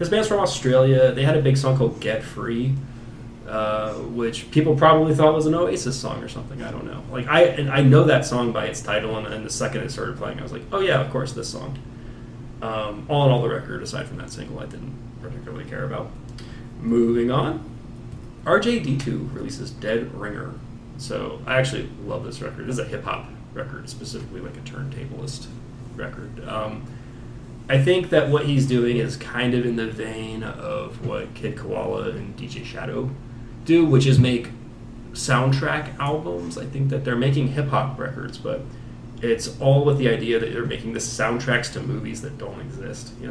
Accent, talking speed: American, 195 wpm